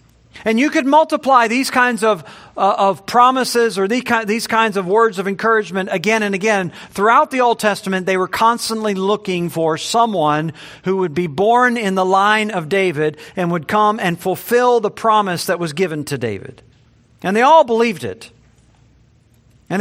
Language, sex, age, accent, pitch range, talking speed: English, male, 50-69, American, 140-195 Hz, 175 wpm